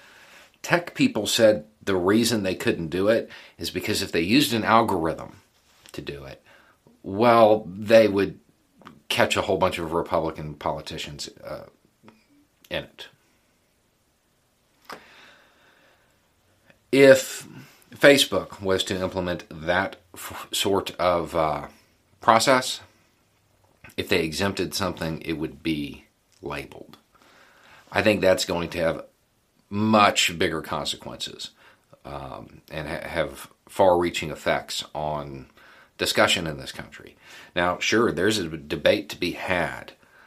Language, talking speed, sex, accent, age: English, 115 wpm, male, American, 40-59